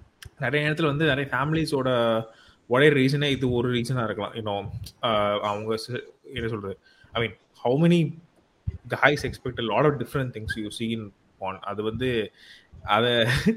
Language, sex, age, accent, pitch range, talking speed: Tamil, male, 20-39, native, 110-150 Hz, 65 wpm